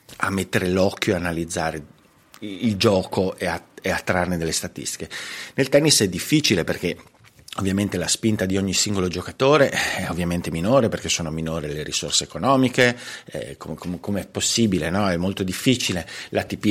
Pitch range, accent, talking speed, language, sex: 85-105 Hz, native, 160 wpm, Italian, male